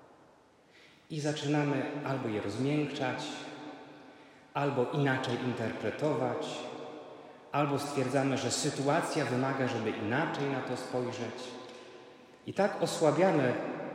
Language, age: Polish, 30-49